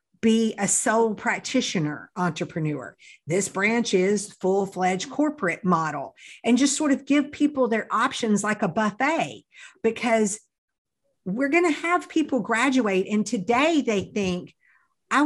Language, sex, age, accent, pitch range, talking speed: English, female, 50-69, American, 190-250 Hz, 135 wpm